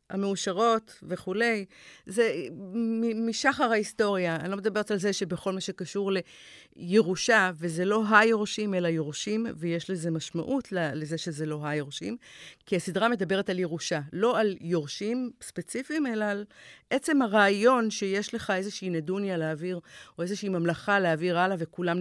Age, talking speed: 50-69, 135 wpm